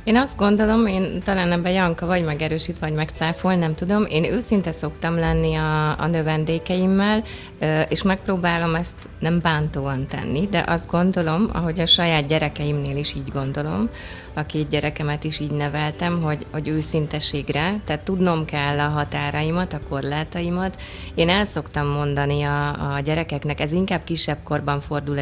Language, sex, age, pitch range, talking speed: Hungarian, female, 30-49, 135-160 Hz, 150 wpm